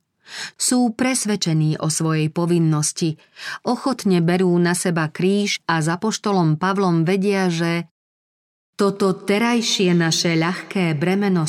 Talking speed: 110 wpm